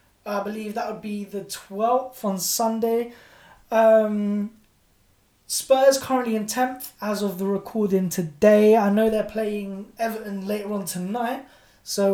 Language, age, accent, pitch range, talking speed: English, 10-29, British, 195-235 Hz, 140 wpm